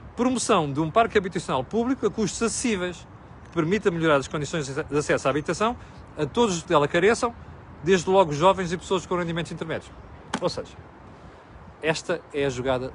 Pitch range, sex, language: 145-220 Hz, male, Portuguese